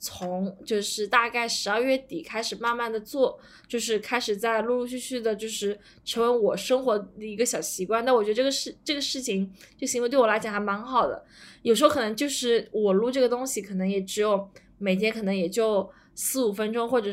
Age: 20-39